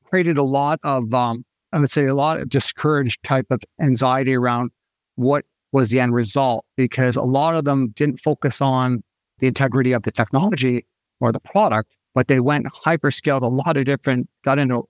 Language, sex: English, male